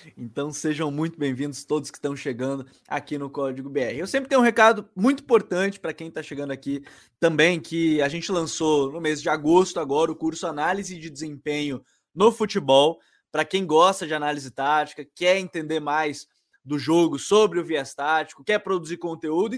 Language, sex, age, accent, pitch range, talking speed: Portuguese, male, 20-39, Brazilian, 150-195 Hz, 180 wpm